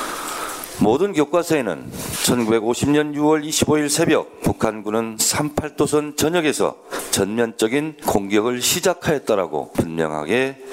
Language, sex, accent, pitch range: Korean, male, native, 130-170 Hz